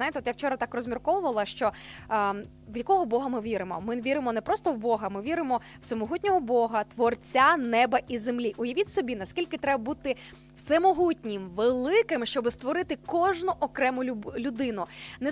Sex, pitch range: female, 235-315 Hz